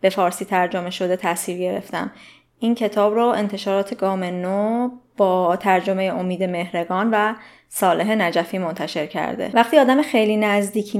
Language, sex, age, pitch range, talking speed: Persian, female, 20-39, 190-220 Hz, 135 wpm